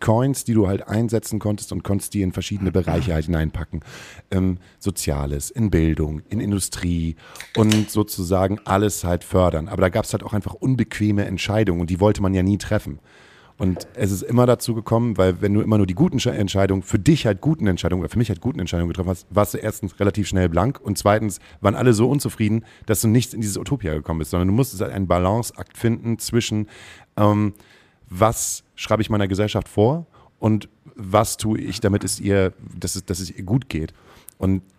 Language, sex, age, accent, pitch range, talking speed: German, male, 40-59, German, 95-115 Hz, 200 wpm